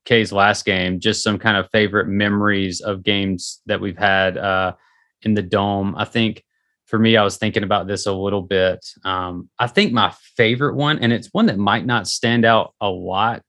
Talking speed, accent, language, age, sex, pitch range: 205 wpm, American, English, 20-39, male, 95-115 Hz